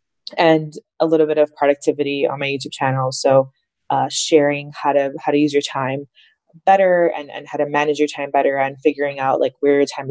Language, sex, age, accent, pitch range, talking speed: English, female, 20-39, American, 145-175 Hz, 215 wpm